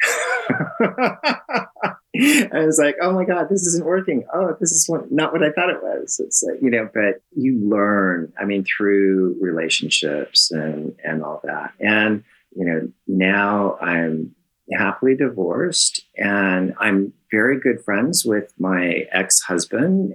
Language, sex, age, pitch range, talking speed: English, male, 40-59, 90-120 Hz, 145 wpm